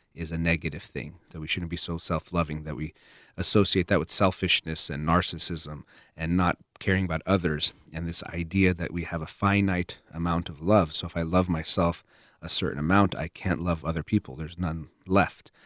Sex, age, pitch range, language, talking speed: male, 30-49, 85-105 Hz, English, 190 wpm